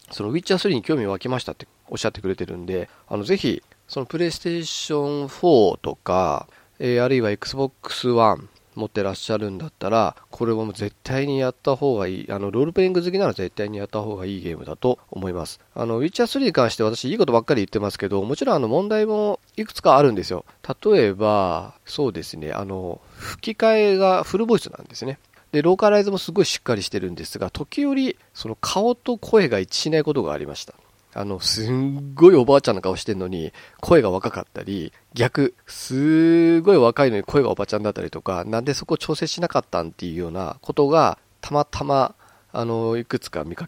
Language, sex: Japanese, male